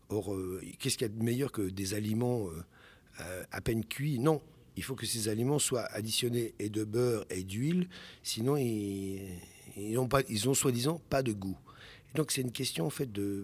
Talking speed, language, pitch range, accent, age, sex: 200 wpm, French, 105-135 Hz, French, 60-79, male